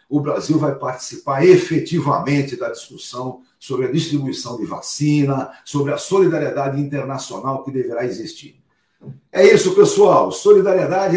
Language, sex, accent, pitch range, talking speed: Portuguese, male, Brazilian, 140-185 Hz, 125 wpm